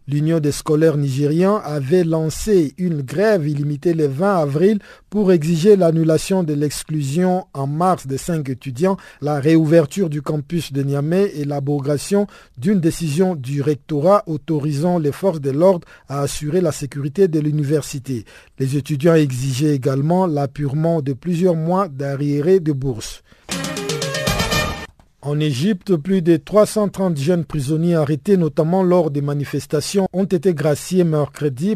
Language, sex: French, male